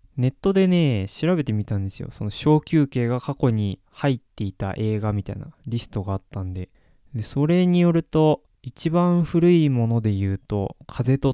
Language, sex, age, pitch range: Japanese, male, 20-39, 100-140 Hz